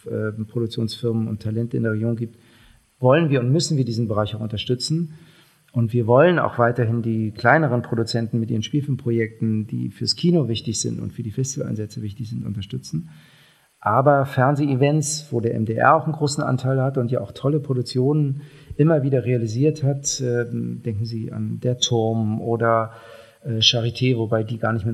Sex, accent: male, German